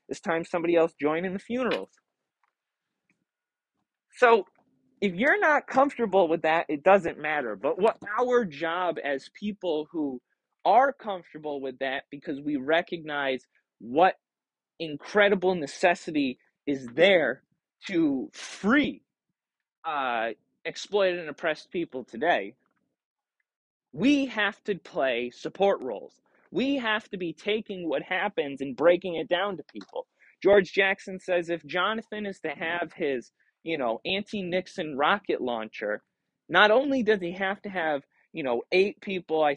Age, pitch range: 20-39, 155-210 Hz